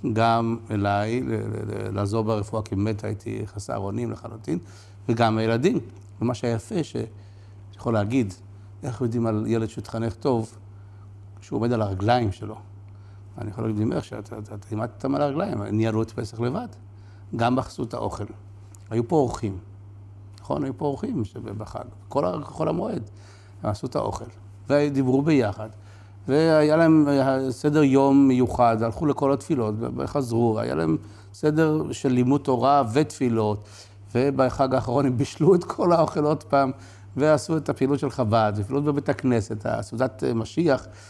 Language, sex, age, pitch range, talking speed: Hebrew, male, 60-79, 100-135 Hz, 150 wpm